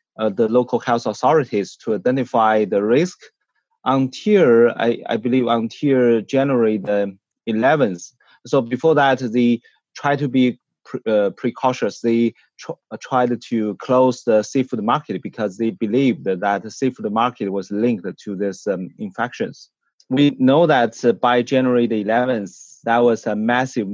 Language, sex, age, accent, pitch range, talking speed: English, male, 30-49, Chinese, 110-125 Hz, 155 wpm